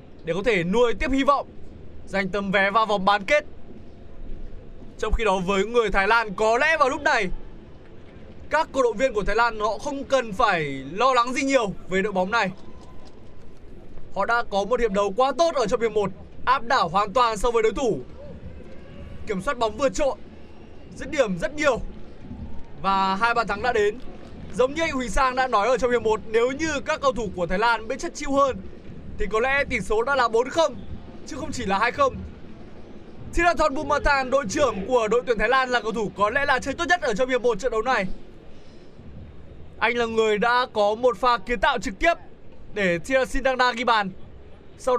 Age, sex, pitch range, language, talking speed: 20-39, male, 215-275 Hz, Vietnamese, 215 wpm